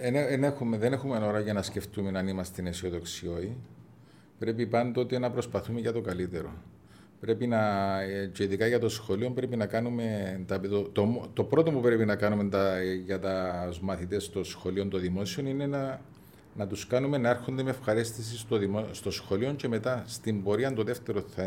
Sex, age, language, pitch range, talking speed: male, 40-59, Greek, 95-120 Hz, 180 wpm